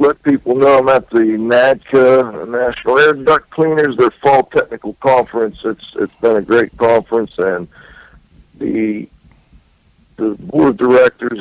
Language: English